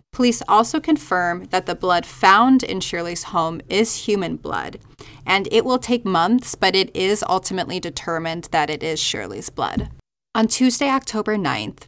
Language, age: English, 20-39